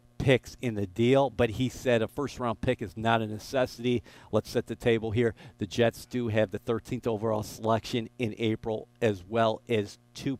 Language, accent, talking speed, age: English, American, 195 wpm, 50-69